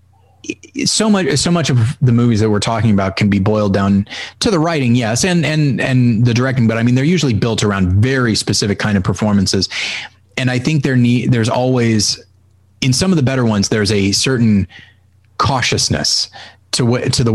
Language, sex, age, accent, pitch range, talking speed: English, male, 30-49, American, 100-125 Hz, 195 wpm